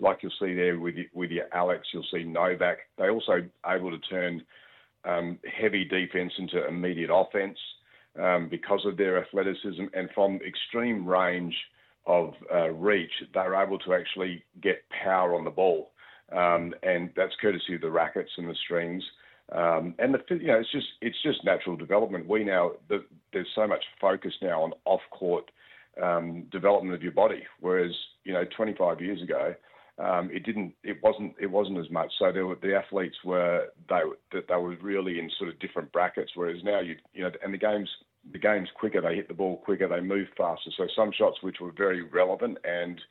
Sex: male